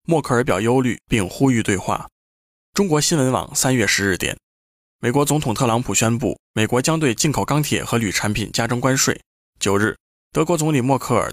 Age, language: 20-39, Chinese